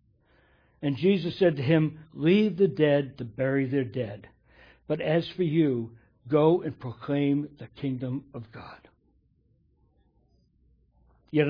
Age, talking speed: 60-79, 125 wpm